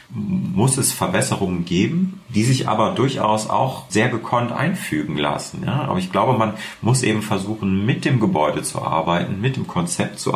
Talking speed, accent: 170 wpm, German